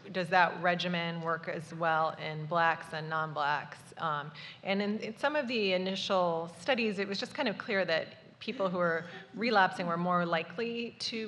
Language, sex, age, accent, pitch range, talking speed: English, female, 30-49, American, 170-200 Hz, 175 wpm